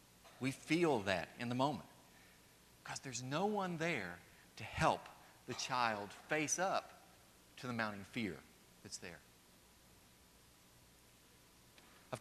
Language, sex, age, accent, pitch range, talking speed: English, male, 50-69, American, 90-145 Hz, 120 wpm